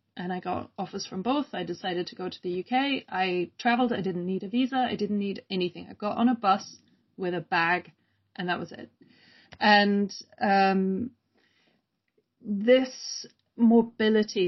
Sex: female